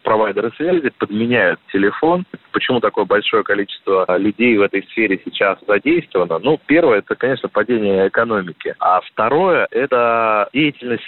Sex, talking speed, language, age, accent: male, 130 wpm, Russian, 30-49, native